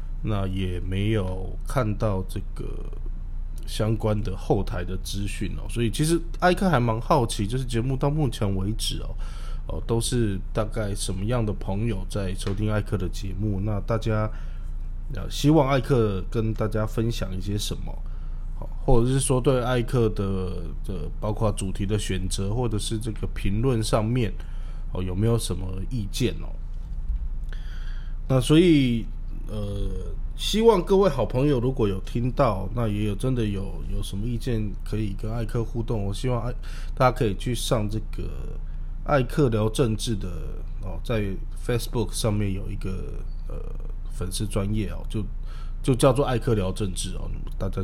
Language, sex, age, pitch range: Chinese, male, 20-39, 90-115 Hz